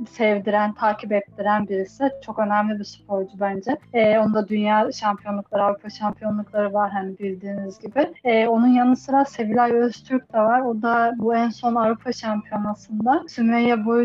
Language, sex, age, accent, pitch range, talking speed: Turkish, female, 30-49, native, 210-240 Hz, 150 wpm